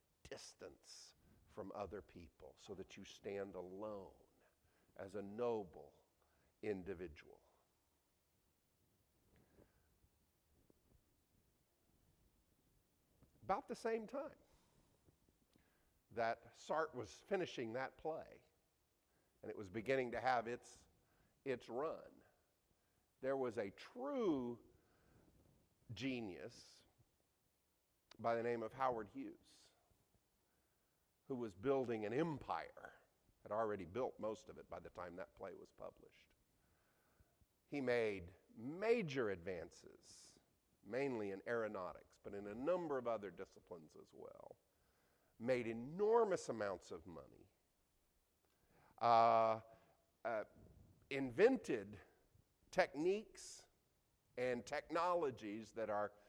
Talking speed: 95 wpm